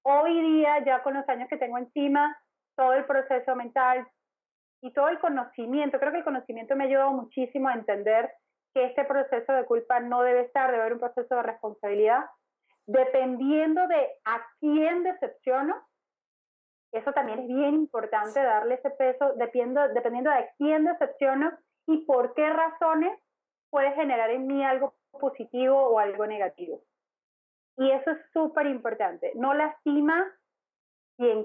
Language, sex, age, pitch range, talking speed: Spanish, female, 30-49, 245-290 Hz, 155 wpm